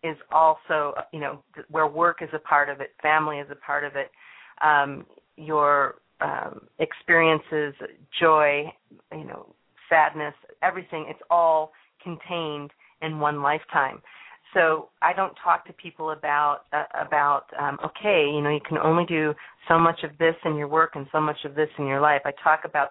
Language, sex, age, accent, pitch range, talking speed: English, female, 40-59, American, 145-165 Hz, 175 wpm